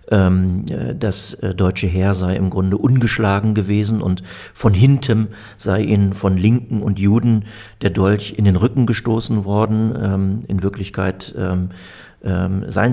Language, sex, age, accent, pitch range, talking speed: German, male, 50-69, German, 95-110 Hz, 125 wpm